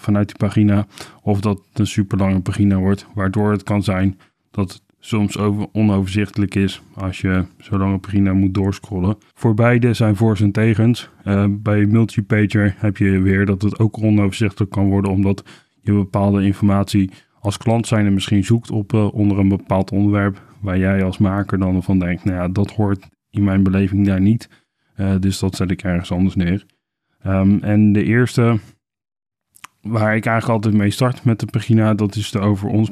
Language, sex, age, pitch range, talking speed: Dutch, male, 20-39, 95-105 Hz, 185 wpm